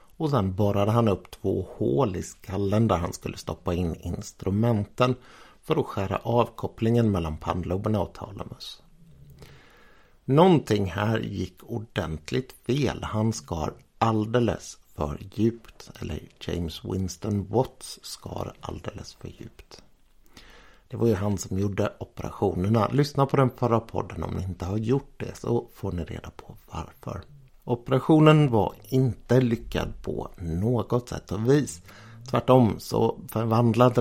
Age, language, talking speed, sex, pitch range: 60-79, Swedish, 135 wpm, male, 95-125 Hz